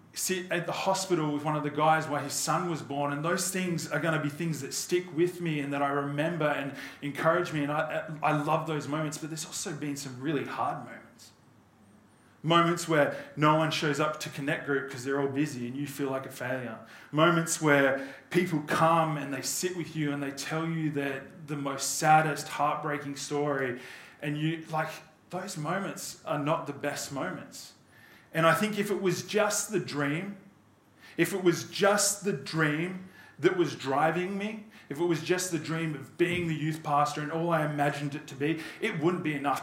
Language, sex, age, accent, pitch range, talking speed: English, male, 20-39, Australian, 145-170 Hz, 205 wpm